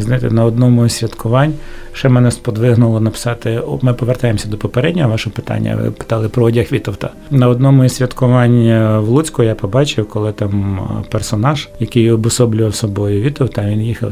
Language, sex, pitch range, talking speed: Ukrainian, male, 110-130 Hz, 155 wpm